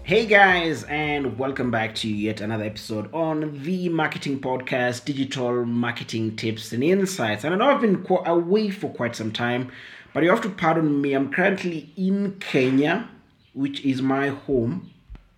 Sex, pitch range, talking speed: male, 115-150 Hz, 165 wpm